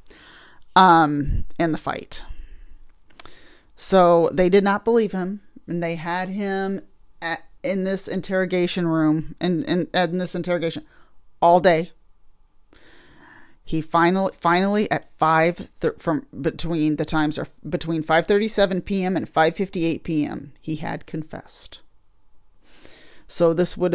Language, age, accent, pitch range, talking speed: English, 40-59, American, 155-185 Hz, 125 wpm